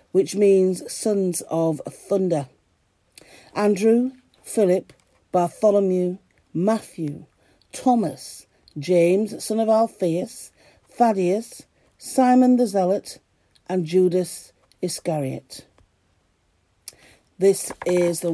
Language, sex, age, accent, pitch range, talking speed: English, female, 50-69, British, 170-220 Hz, 80 wpm